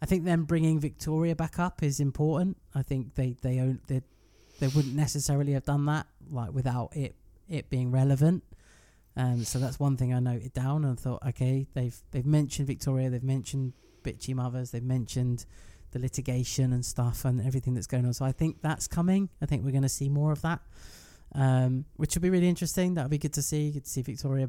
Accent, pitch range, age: British, 120-150 Hz, 20-39